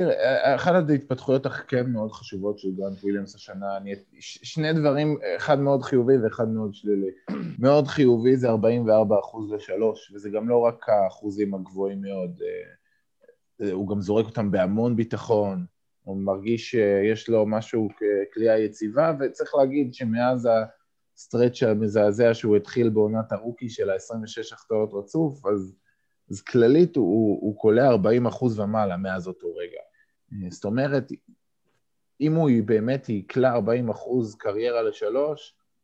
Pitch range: 105-125 Hz